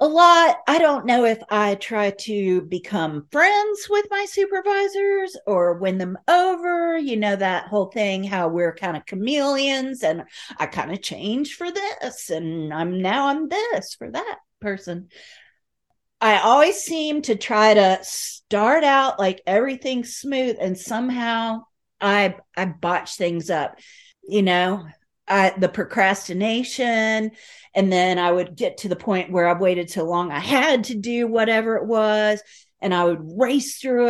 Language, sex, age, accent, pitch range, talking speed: English, female, 40-59, American, 195-300 Hz, 160 wpm